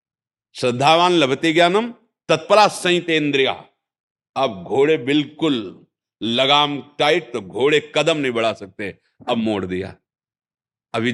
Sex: male